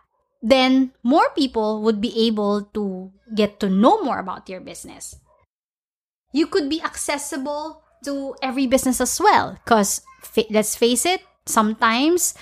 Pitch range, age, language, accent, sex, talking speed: 215-275 Hz, 20-39, English, Filipino, female, 135 wpm